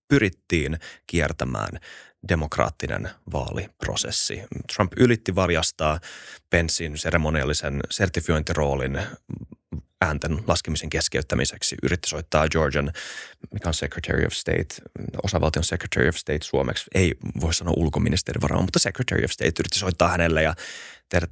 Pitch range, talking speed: 80-100 Hz, 110 wpm